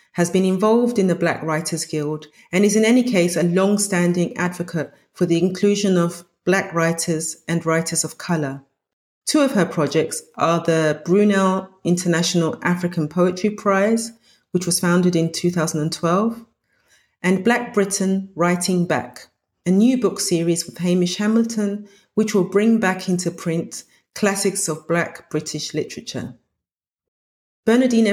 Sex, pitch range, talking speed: female, 155-190 Hz, 140 wpm